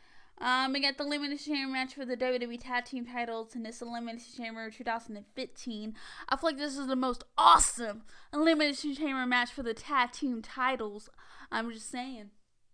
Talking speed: 170 wpm